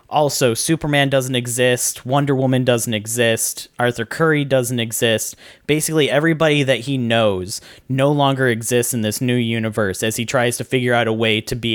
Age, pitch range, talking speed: 30-49, 115-135 Hz, 175 wpm